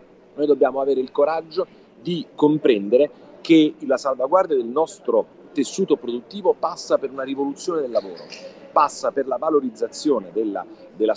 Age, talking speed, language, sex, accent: 40-59, 140 wpm, Italian, male, native